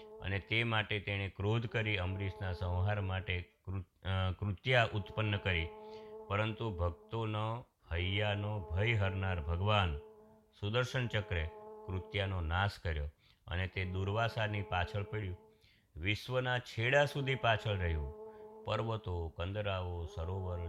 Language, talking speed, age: Gujarati, 80 wpm, 50-69